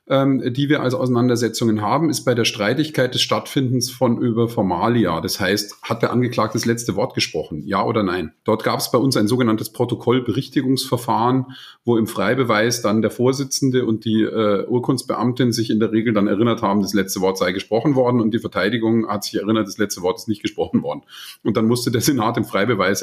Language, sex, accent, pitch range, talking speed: German, male, German, 110-135 Hz, 200 wpm